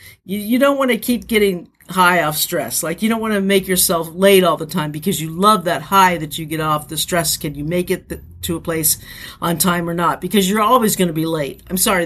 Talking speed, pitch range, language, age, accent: 255 wpm, 155-205 Hz, English, 50-69, American